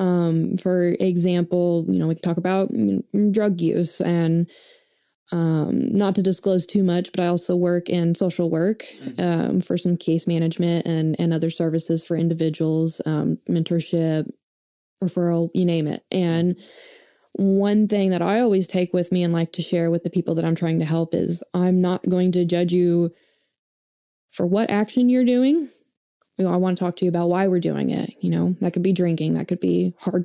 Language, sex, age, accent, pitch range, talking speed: English, female, 20-39, American, 170-190 Hz, 190 wpm